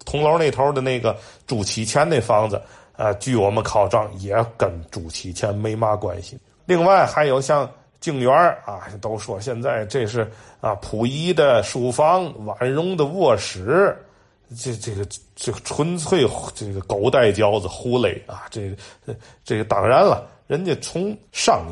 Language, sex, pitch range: Chinese, male, 100-130 Hz